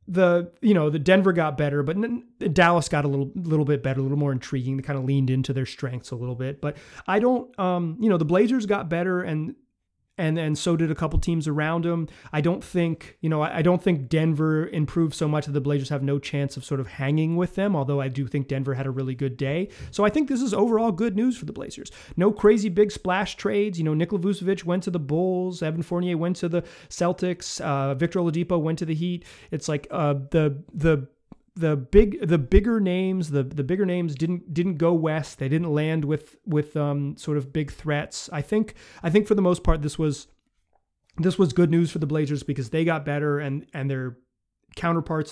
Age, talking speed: 30-49, 230 wpm